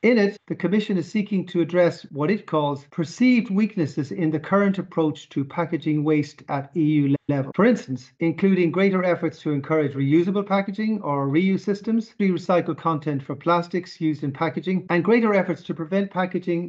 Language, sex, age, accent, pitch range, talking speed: English, male, 40-59, Irish, 150-190 Hz, 175 wpm